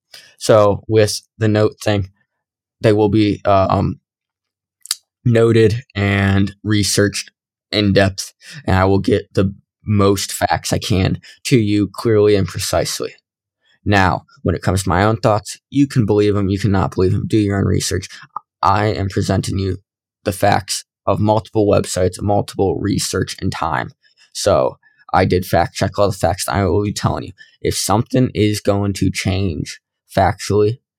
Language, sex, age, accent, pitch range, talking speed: English, male, 20-39, American, 95-110 Hz, 160 wpm